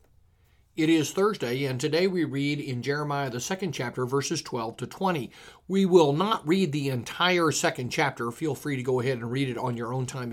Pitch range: 135-175 Hz